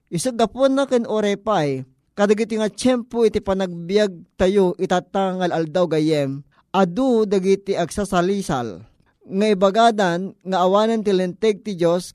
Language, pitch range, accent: Filipino, 175-210 Hz, native